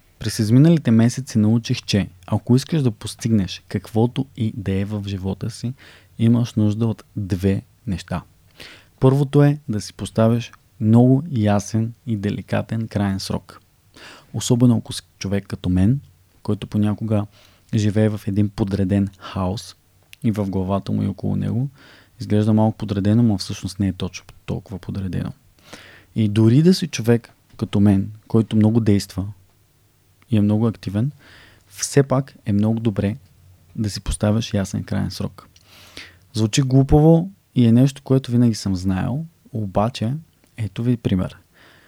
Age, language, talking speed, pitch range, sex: 20-39, Bulgarian, 140 wpm, 95-115 Hz, male